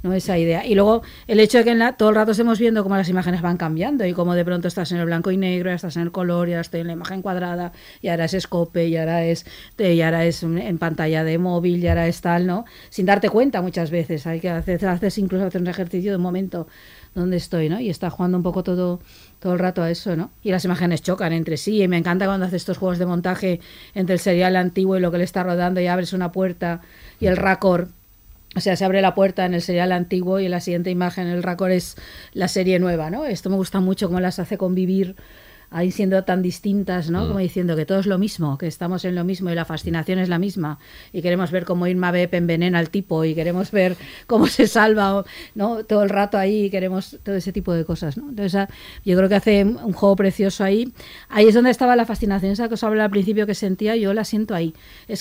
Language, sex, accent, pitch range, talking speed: Spanish, female, Spanish, 175-200 Hz, 250 wpm